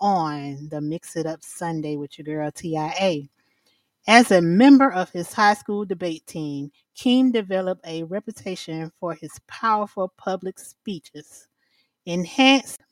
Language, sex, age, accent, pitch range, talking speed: English, female, 30-49, American, 160-210 Hz, 135 wpm